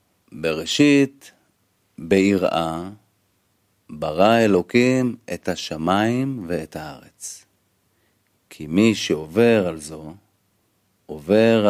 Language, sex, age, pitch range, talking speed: Hebrew, male, 50-69, 90-110 Hz, 70 wpm